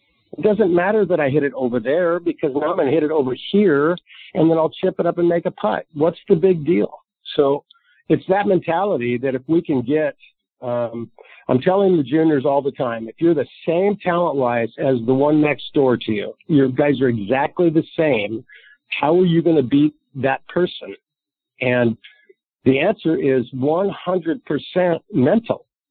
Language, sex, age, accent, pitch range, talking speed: English, male, 50-69, American, 130-170 Hz, 190 wpm